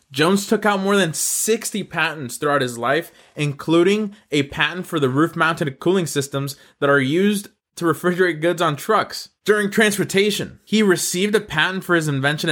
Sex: male